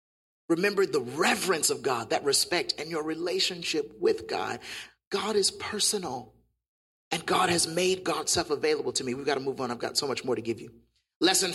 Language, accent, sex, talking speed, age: English, American, male, 190 wpm, 30-49